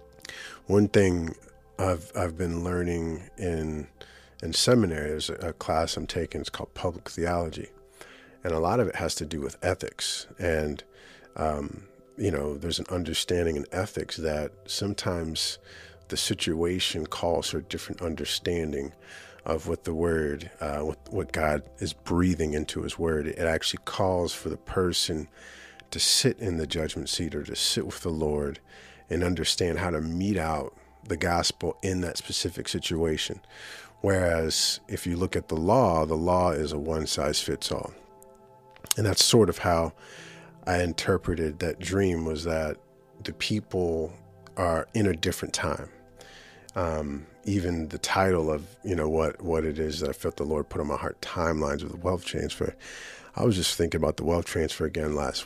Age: 50-69